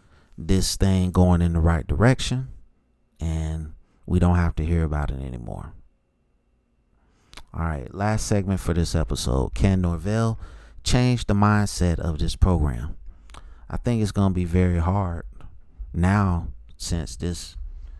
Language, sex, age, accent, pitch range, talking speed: English, male, 30-49, American, 75-95 Hz, 135 wpm